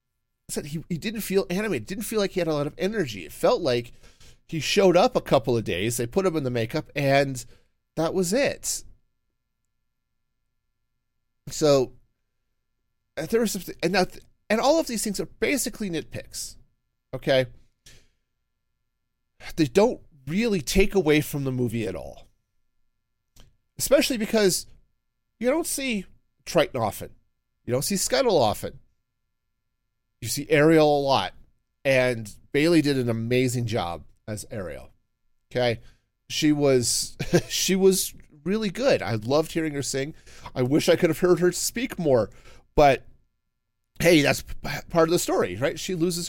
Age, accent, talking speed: 40-59, American, 150 wpm